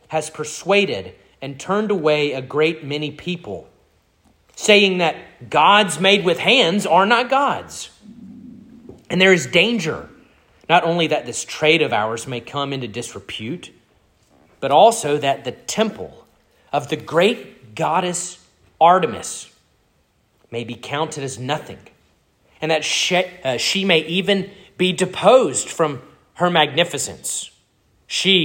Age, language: 30-49, English